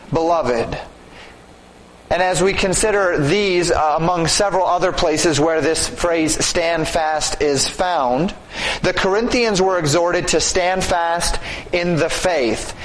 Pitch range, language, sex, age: 150-185 Hz, English, male, 30-49